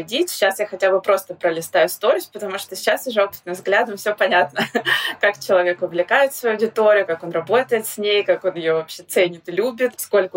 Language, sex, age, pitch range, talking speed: Russian, female, 20-39, 175-205 Hz, 190 wpm